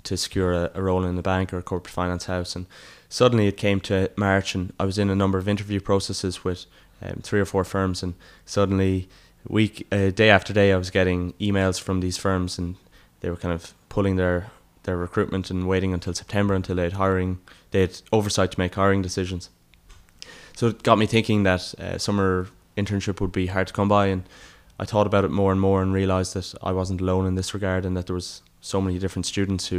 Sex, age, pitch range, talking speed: male, 20-39, 90-100 Hz, 225 wpm